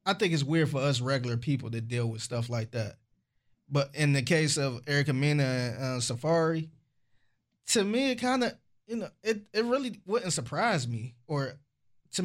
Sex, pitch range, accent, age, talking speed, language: male, 125-165 Hz, American, 20-39, 190 wpm, English